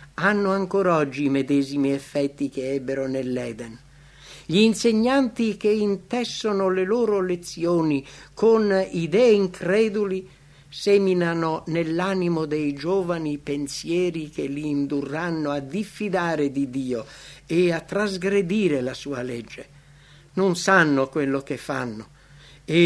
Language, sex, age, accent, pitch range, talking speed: English, male, 60-79, Italian, 140-190 Hz, 115 wpm